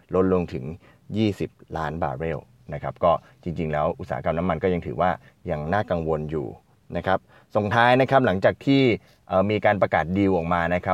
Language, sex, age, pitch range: Thai, male, 20-39, 85-110 Hz